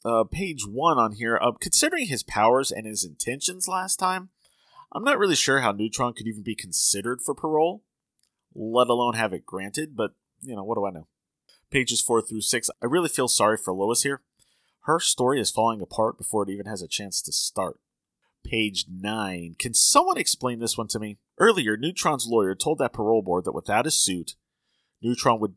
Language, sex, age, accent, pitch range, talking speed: English, male, 30-49, American, 100-135 Hz, 195 wpm